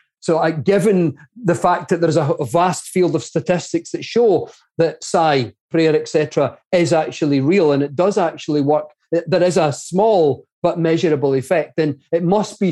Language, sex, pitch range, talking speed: English, male, 170-240 Hz, 185 wpm